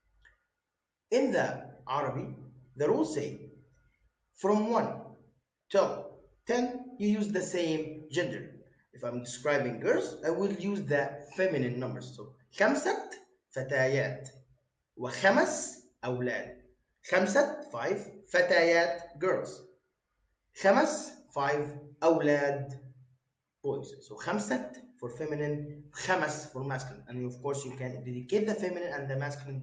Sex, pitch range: male, 130-185 Hz